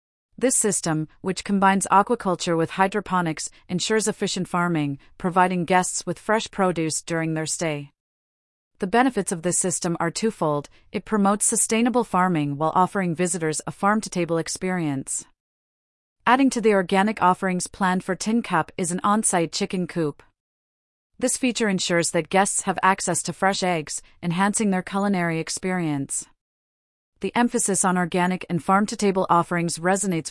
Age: 40-59